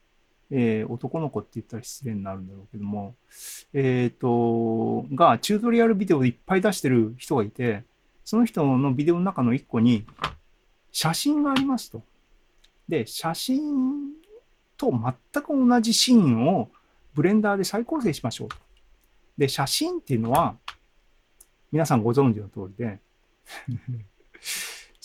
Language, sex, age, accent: Japanese, male, 40-59, native